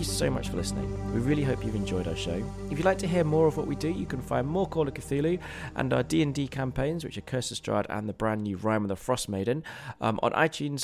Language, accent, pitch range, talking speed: English, British, 95-135 Hz, 270 wpm